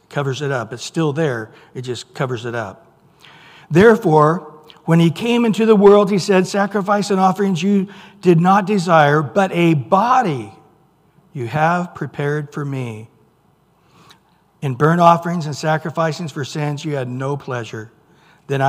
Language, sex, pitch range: English, male, 145-185 Hz